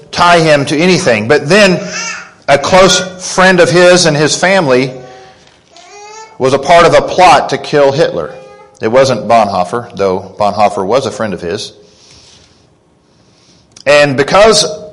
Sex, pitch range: male, 125-175 Hz